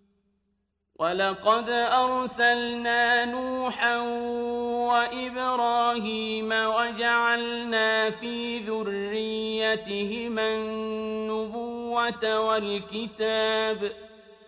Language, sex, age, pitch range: Arabic, male, 50-69, 215-235 Hz